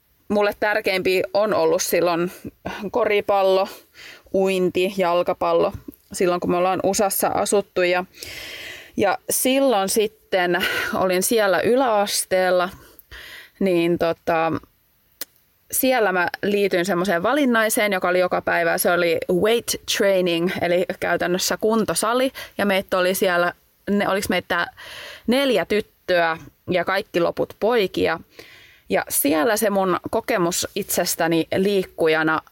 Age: 20-39